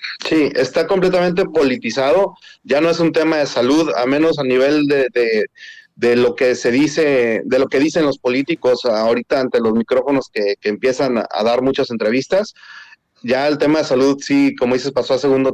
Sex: male